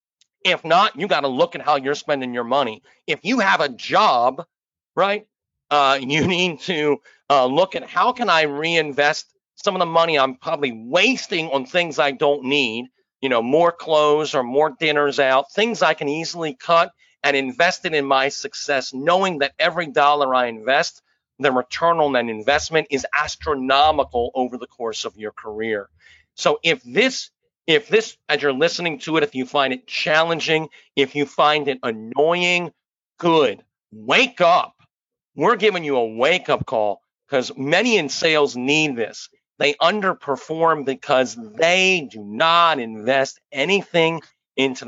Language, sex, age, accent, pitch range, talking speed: English, male, 40-59, American, 130-165 Hz, 165 wpm